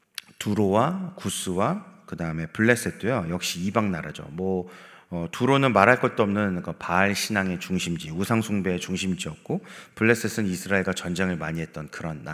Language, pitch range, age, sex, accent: Korean, 95-145 Hz, 30-49, male, native